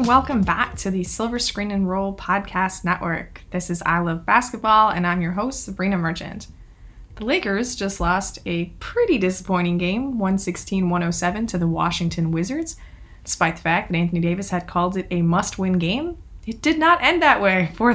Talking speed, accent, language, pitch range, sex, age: 175 wpm, American, English, 165-195 Hz, female, 20-39